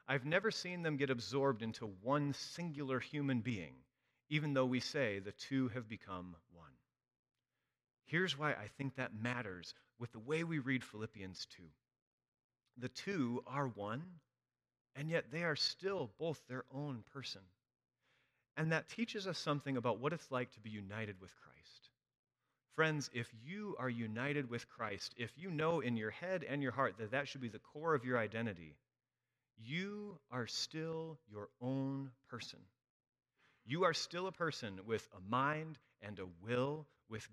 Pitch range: 120-150 Hz